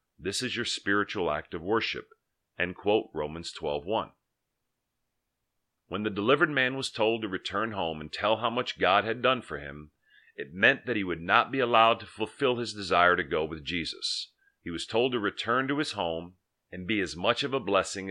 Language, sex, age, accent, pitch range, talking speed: English, male, 40-59, American, 90-120 Hz, 200 wpm